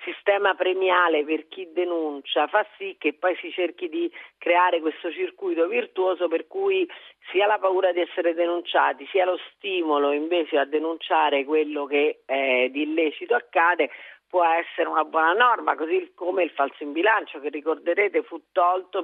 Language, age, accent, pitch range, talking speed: Italian, 40-59, native, 150-210 Hz, 160 wpm